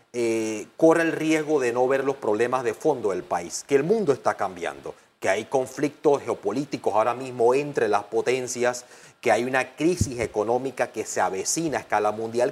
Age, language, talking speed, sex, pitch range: 30-49, Spanish, 180 wpm, male, 120-165 Hz